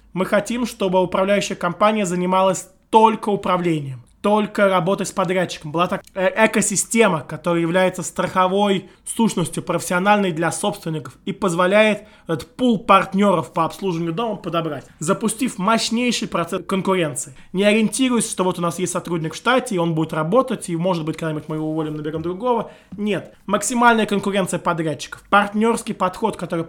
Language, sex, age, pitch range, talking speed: Russian, male, 20-39, 165-210 Hz, 145 wpm